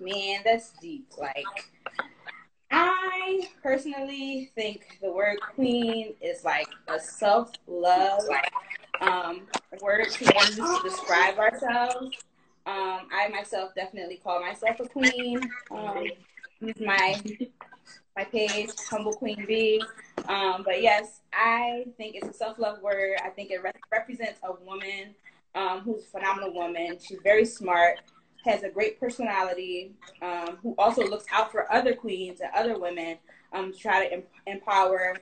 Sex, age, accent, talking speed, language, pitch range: female, 20-39, American, 130 wpm, English, 190-230 Hz